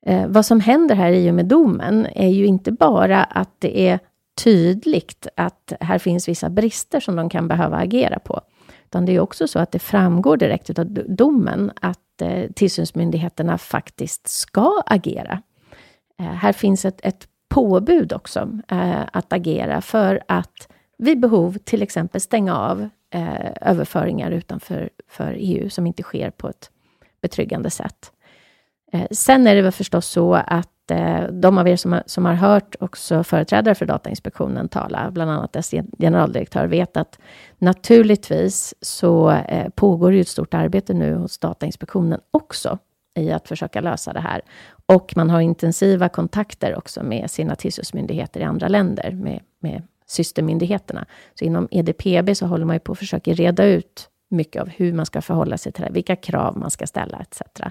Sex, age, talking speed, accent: female, 40-59, 165 wpm, native